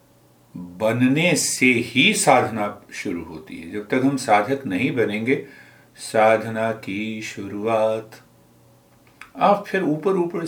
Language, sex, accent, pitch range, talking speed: Hindi, male, native, 115-145 Hz, 115 wpm